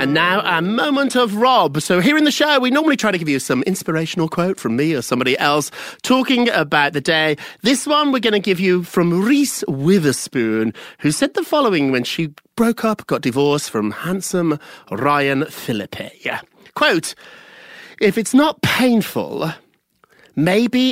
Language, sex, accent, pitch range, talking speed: English, male, British, 145-230 Hz, 170 wpm